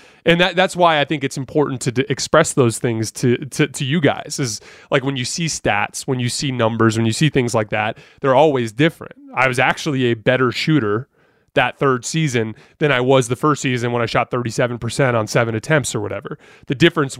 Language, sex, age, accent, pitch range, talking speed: English, male, 30-49, American, 125-150 Hz, 220 wpm